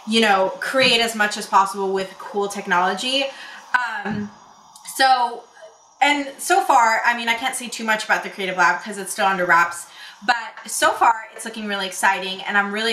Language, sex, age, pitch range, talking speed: English, female, 20-39, 190-240 Hz, 190 wpm